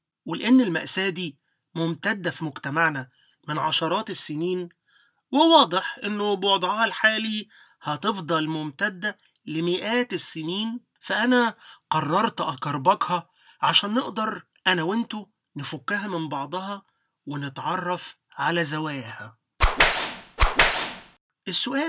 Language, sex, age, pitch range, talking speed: Arabic, male, 30-49, 155-220 Hz, 85 wpm